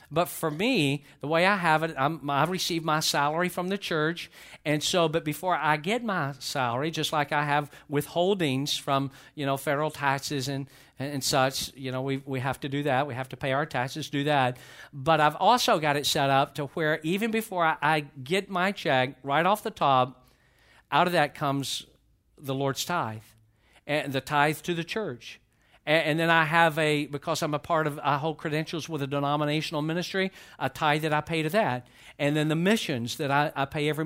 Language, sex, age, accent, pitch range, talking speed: English, male, 50-69, American, 135-165 Hz, 210 wpm